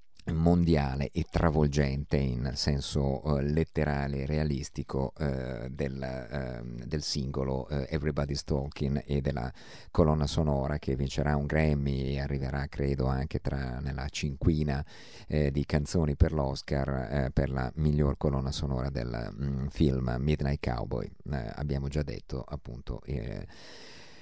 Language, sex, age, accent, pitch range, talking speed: Italian, male, 50-69, native, 70-80 Hz, 130 wpm